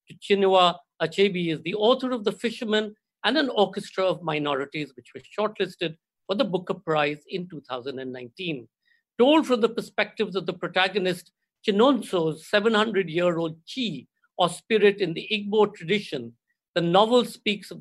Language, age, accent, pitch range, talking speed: Hindi, 50-69, native, 155-215 Hz, 150 wpm